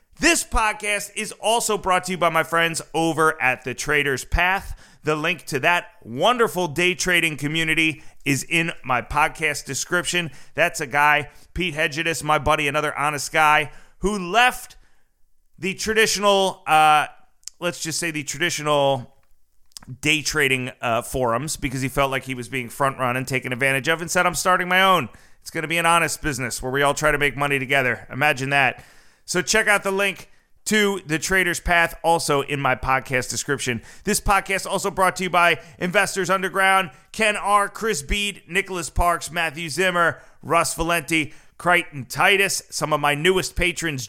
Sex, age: male, 30-49